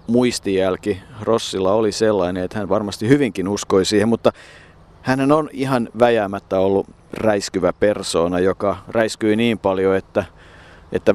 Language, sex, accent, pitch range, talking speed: Finnish, male, native, 100-115 Hz, 130 wpm